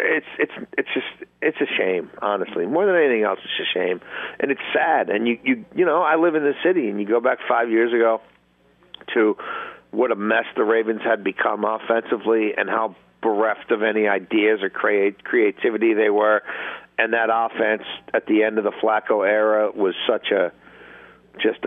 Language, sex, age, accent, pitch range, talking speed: English, male, 50-69, American, 110-170 Hz, 190 wpm